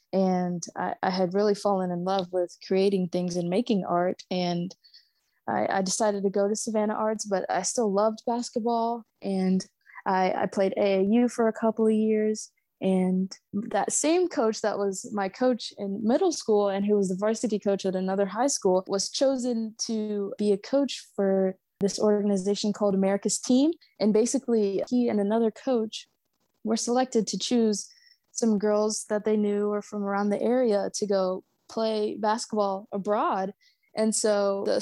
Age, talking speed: 20-39, 170 wpm